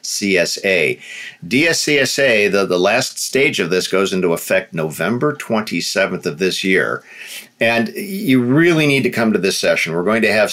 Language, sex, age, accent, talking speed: English, male, 50-69, American, 165 wpm